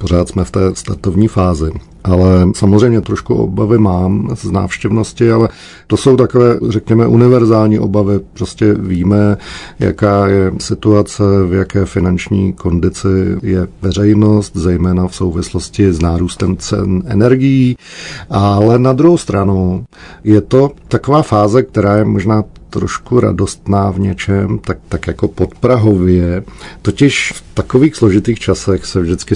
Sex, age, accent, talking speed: male, 40-59, native, 135 wpm